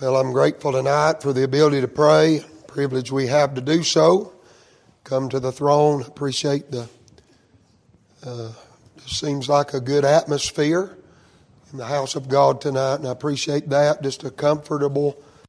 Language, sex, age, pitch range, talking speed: English, male, 30-49, 135-165 Hz, 160 wpm